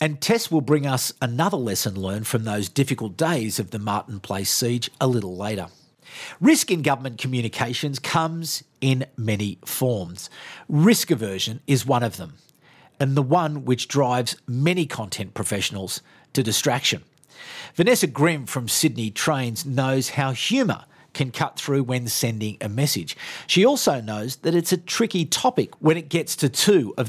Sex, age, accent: male, 50-69, Australian